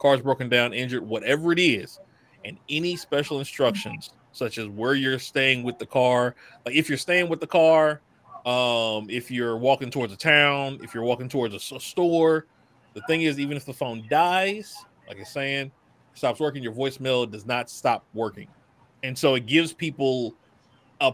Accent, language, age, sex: American, English, 30-49, male